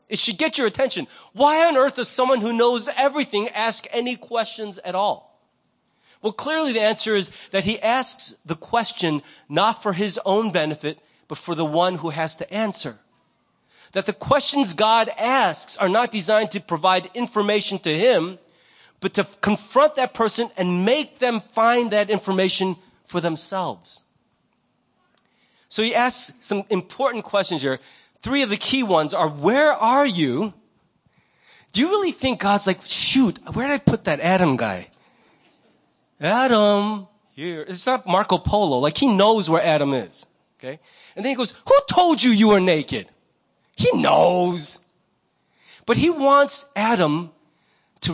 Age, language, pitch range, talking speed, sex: 30-49, English, 180-240 Hz, 160 wpm, male